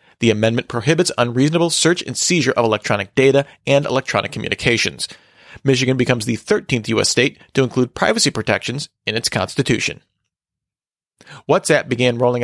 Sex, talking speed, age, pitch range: male, 140 wpm, 40-59, 125-160 Hz